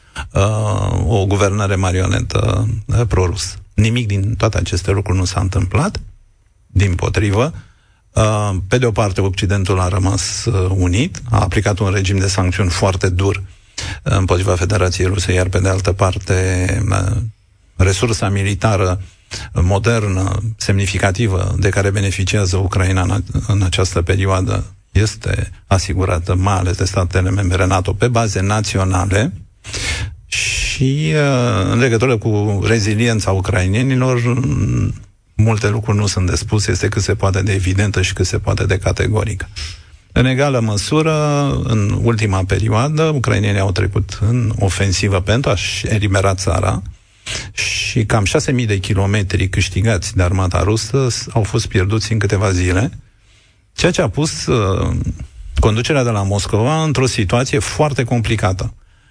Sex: male